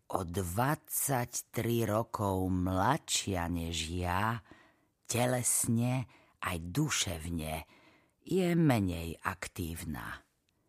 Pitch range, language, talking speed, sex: 95-120 Hz, Slovak, 65 wpm, female